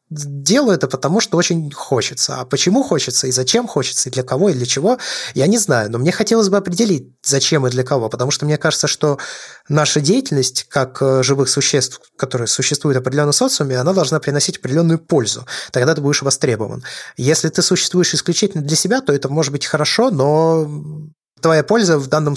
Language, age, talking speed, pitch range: Russian, 20-39, 190 wpm, 135-170 Hz